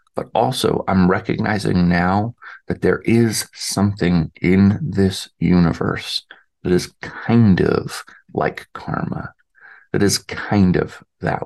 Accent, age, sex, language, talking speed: American, 40-59, male, English, 120 wpm